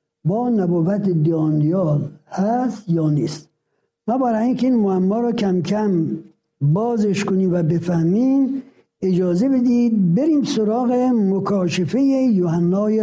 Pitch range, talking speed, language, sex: 170-235 Hz, 105 wpm, Persian, male